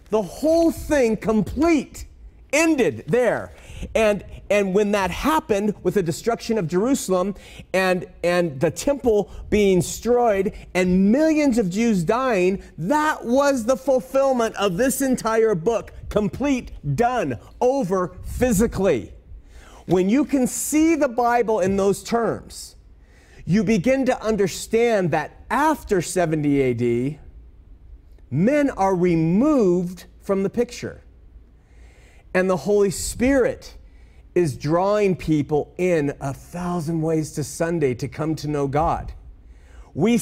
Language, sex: English, male